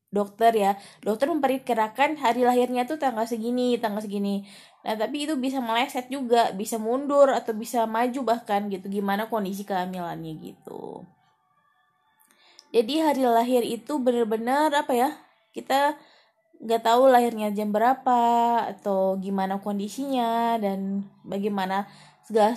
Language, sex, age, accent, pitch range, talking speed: Indonesian, female, 20-39, native, 210-260 Hz, 125 wpm